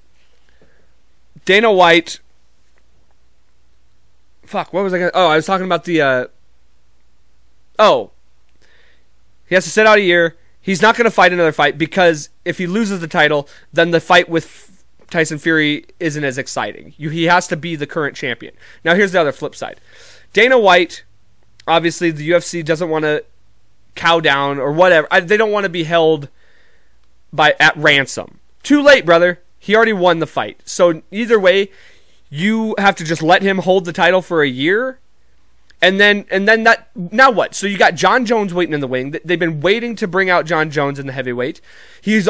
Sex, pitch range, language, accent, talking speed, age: male, 155-210 Hz, English, American, 185 wpm, 30-49